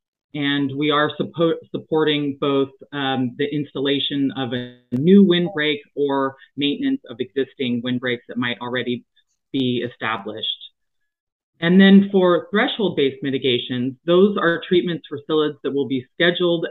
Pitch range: 130-165 Hz